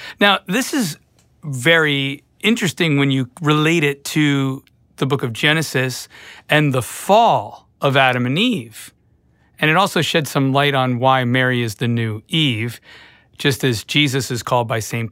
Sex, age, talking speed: male, 40-59, 165 wpm